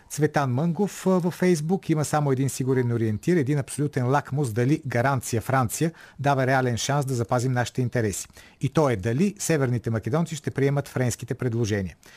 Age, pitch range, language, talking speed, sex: 40-59, 120-150 Hz, Bulgarian, 160 wpm, male